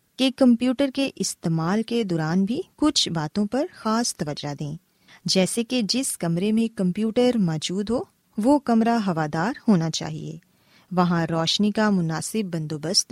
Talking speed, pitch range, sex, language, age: 140 wpm, 170-240 Hz, female, Urdu, 20-39